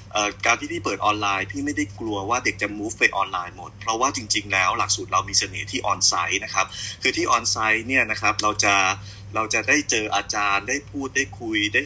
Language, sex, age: Thai, male, 20-39